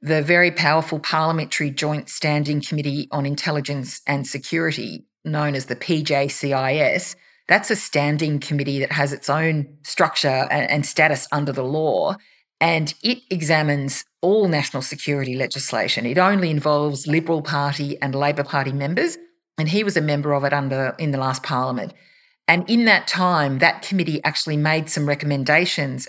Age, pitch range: 40-59, 140-160 Hz